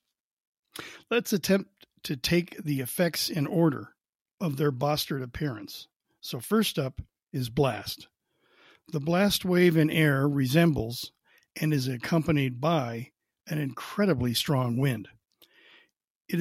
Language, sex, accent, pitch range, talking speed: English, male, American, 140-175 Hz, 115 wpm